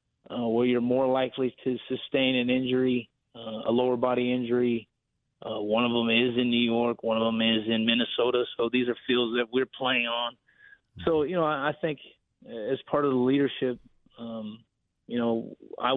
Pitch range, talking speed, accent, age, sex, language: 115-125 Hz, 190 wpm, American, 30-49, male, English